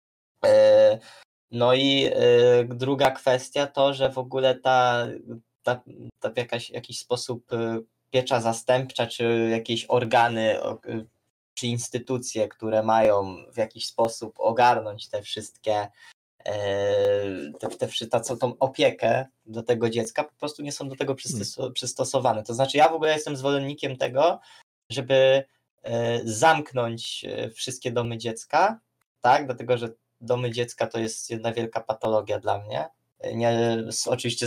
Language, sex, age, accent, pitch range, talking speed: Polish, male, 20-39, native, 115-130 Hz, 125 wpm